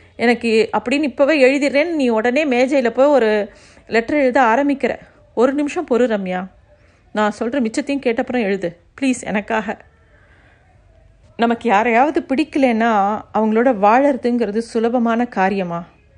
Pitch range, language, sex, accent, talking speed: 200-250 Hz, Tamil, female, native, 110 wpm